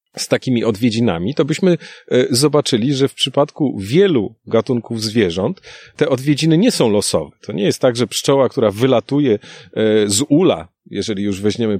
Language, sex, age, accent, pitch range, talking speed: Polish, male, 40-59, native, 110-140 Hz, 155 wpm